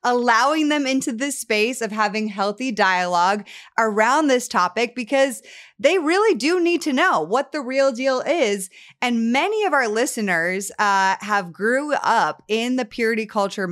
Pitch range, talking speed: 200-250 Hz, 160 wpm